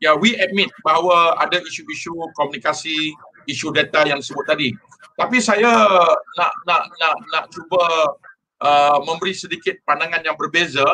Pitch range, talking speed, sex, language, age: 155-195 Hz, 145 wpm, male, Malay, 50-69